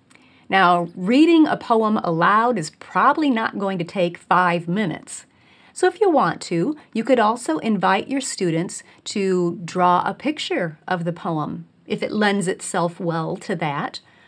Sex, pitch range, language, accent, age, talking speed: female, 180-245 Hz, English, American, 40-59, 160 wpm